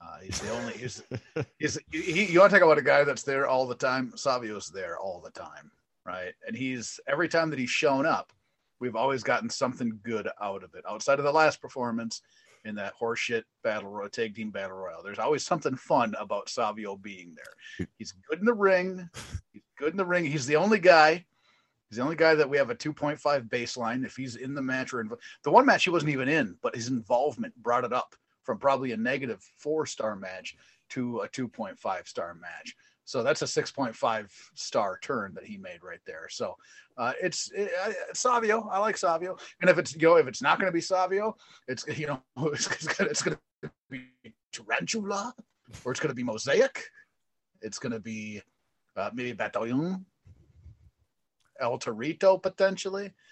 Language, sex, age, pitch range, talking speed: English, male, 40-59, 125-185 Hz, 205 wpm